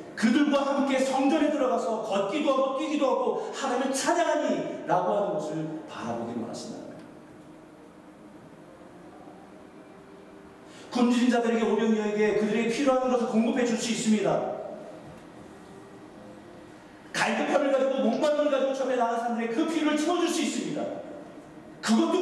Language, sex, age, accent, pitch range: Korean, male, 40-59, native, 220-280 Hz